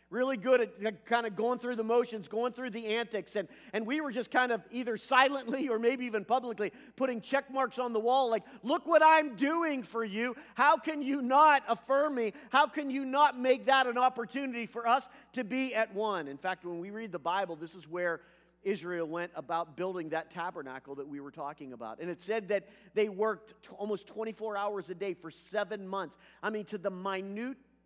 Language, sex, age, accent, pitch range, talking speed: English, male, 40-59, American, 185-245 Hz, 215 wpm